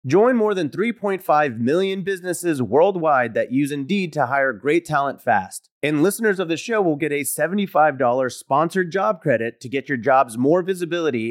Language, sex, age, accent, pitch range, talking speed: English, male, 30-49, American, 130-195 Hz, 175 wpm